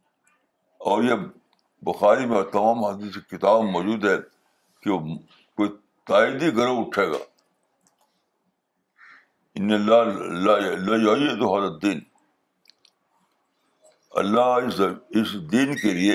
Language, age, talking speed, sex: Urdu, 60-79, 85 wpm, male